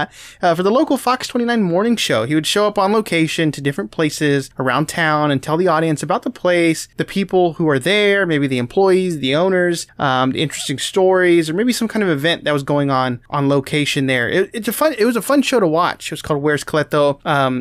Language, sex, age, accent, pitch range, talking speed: English, male, 20-39, American, 145-195 Hz, 240 wpm